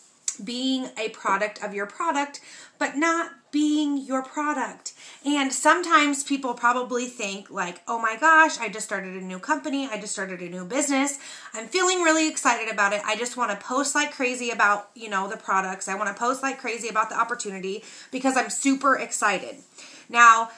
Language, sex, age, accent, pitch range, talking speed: English, female, 30-49, American, 200-265 Hz, 180 wpm